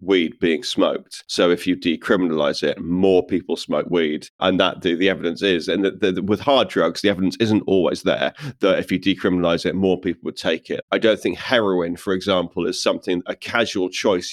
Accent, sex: British, male